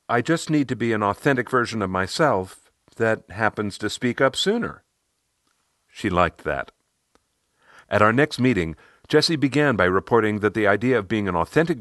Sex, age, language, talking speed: male, 50-69, English, 175 wpm